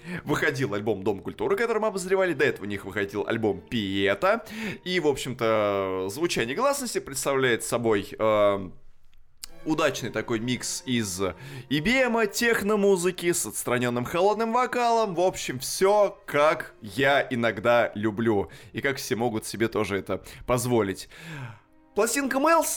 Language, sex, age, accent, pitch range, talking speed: Russian, male, 20-39, native, 110-160 Hz, 130 wpm